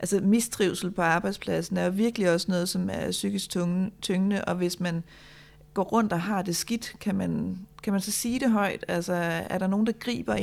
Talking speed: 205 wpm